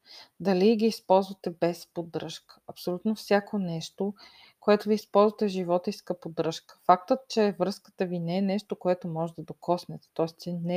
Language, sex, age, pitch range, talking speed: Bulgarian, female, 20-39, 170-210 Hz, 150 wpm